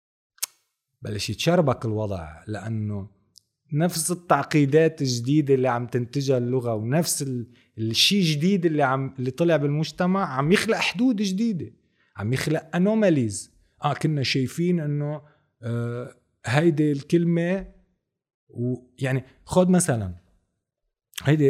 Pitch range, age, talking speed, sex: 110-155 Hz, 30-49, 105 wpm, male